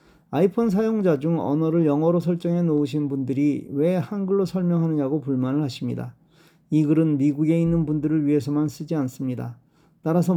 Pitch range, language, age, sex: 140-170 Hz, Korean, 40-59, male